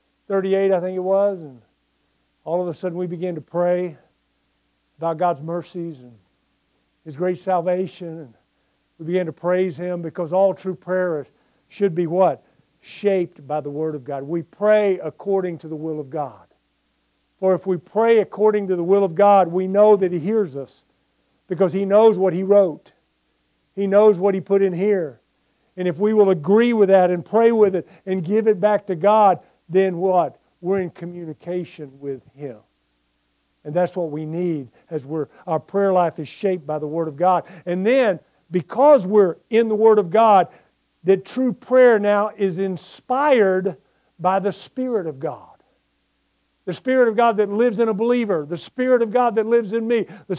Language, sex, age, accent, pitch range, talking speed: English, male, 50-69, American, 160-210 Hz, 185 wpm